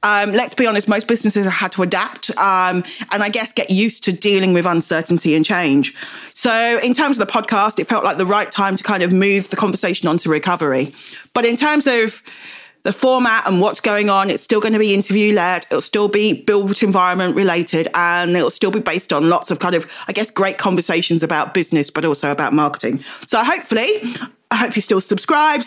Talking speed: 215 wpm